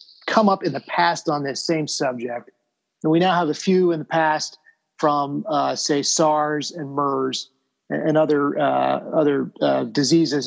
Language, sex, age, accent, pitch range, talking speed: English, male, 30-49, American, 140-165 Hz, 170 wpm